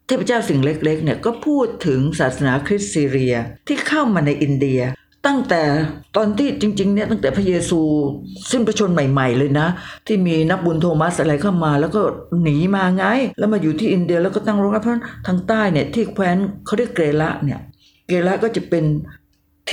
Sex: female